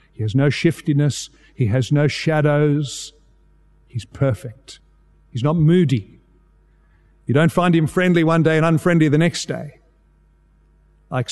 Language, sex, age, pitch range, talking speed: English, male, 50-69, 120-155 Hz, 140 wpm